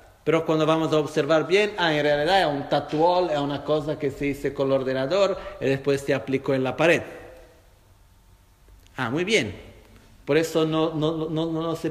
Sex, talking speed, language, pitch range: male, 185 wpm, Italian, 115-180 Hz